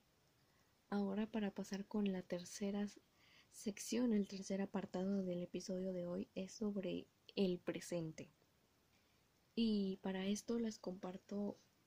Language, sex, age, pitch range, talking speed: Spanish, female, 10-29, 180-200 Hz, 115 wpm